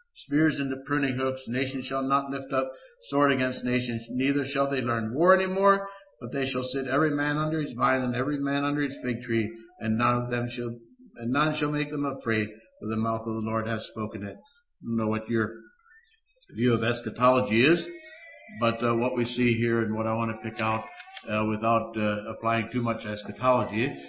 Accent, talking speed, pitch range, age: American, 205 wpm, 110-145 Hz, 60-79